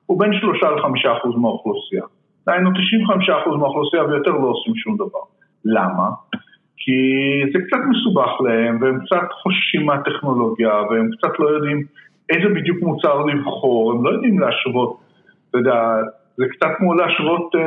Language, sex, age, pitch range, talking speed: Hebrew, male, 50-69, 135-205 Hz, 145 wpm